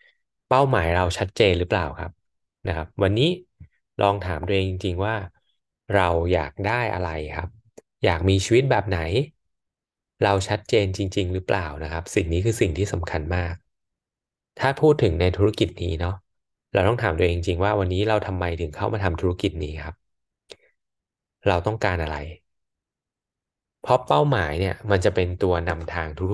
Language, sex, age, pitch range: Thai, male, 20-39, 85-105 Hz